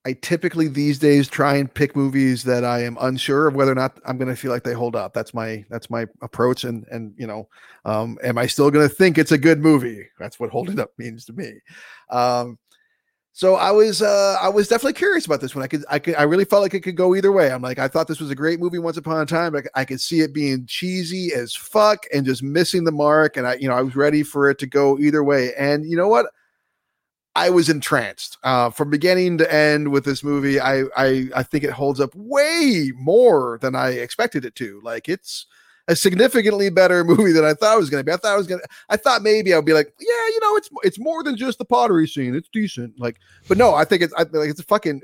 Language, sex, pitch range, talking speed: English, male, 135-190 Hz, 260 wpm